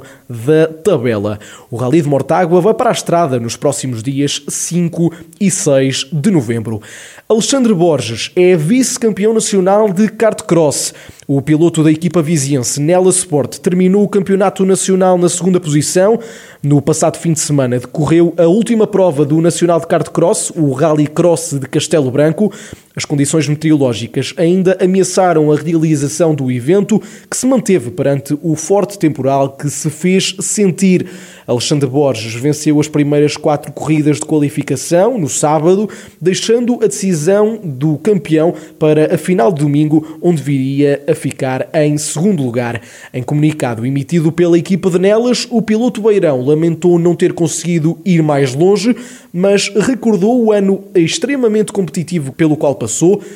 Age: 20-39